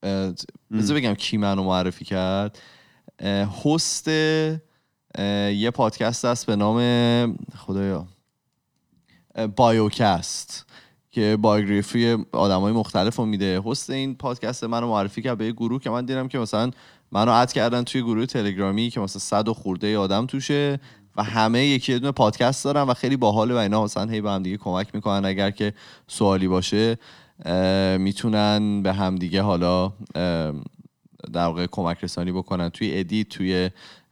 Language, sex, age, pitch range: Persian, male, 20-39, 95-120 Hz